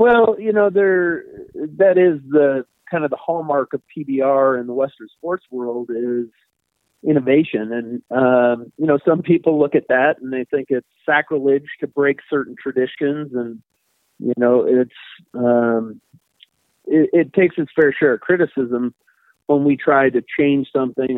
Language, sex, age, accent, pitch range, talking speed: English, male, 40-59, American, 125-150 Hz, 160 wpm